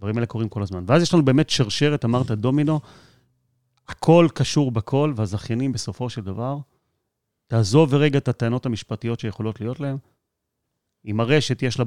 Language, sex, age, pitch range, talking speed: Hebrew, male, 30-49, 110-135 Hz, 155 wpm